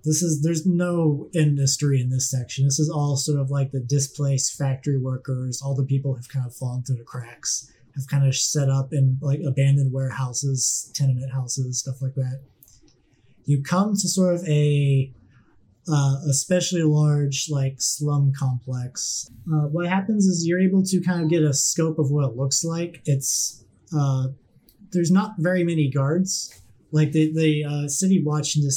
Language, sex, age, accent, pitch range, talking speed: English, male, 20-39, American, 130-155 Hz, 180 wpm